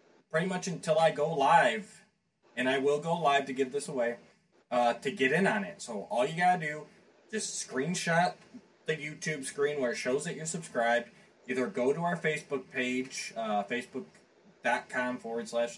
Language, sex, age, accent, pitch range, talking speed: English, male, 20-39, American, 140-210 Hz, 185 wpm